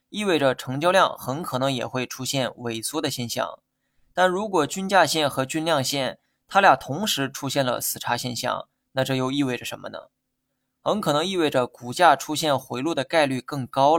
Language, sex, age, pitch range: Chinese, male, 20-39, 125-155 Hz